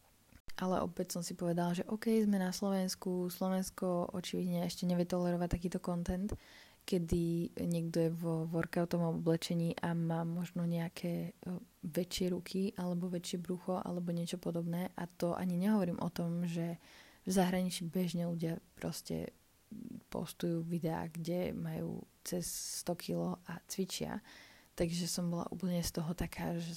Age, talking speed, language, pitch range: 20-39, 145 wpm, Slovak, 170-185 Hz